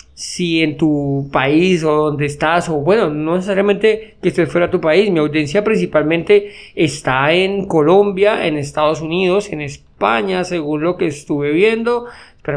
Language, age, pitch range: Spanish, 20-39, 150-180 Hz